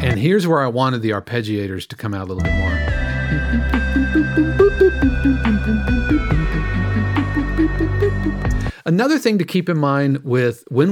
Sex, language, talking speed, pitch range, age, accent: male, English, 120 wpm, 120-160 Hz, 40-59, American